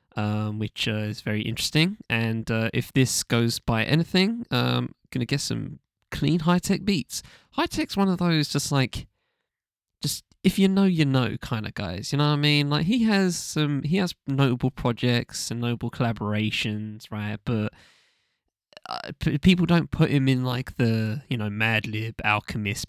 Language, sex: English, male